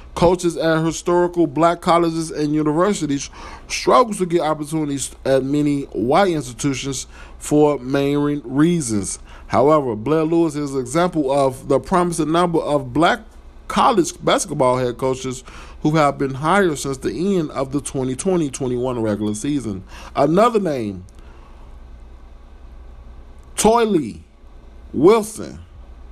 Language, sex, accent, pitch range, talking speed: English, male, American, 125-175 Hz, 115 wpm